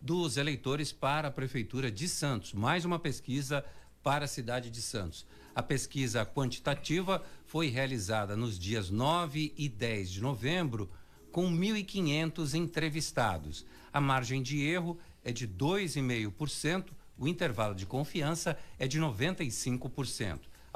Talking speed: 125 wpm